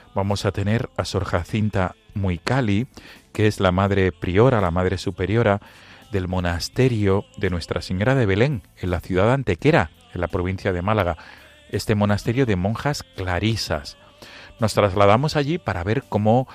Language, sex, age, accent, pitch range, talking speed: Spanish, male, 40-59, Spanish, 90-115 Hz, 155 wpm